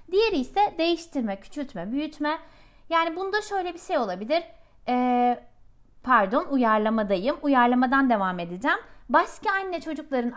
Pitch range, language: 200-315 Hz, Turkish